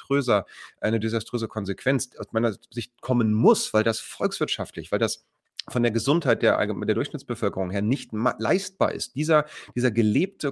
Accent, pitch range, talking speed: German, 105-135 Hz, 155 wpm